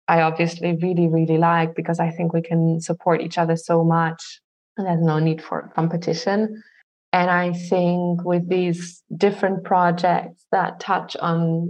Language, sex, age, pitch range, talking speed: English, female, 20-39, 165-180 Hz, 160 wpm